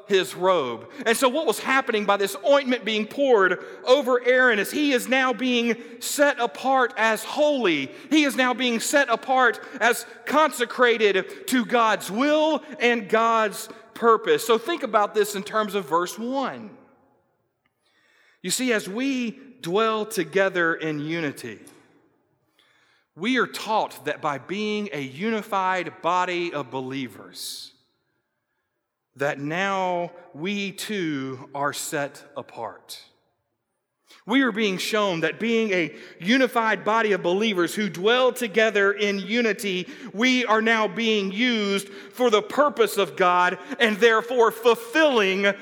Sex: male